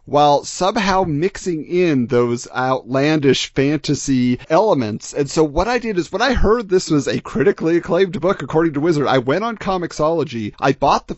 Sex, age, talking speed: male, 40-59, 175 wpm